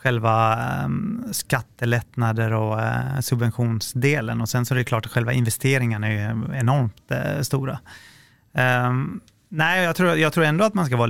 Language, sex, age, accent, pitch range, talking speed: Swedish, male, 30-49, native, 115-135 Hz, 170 wpm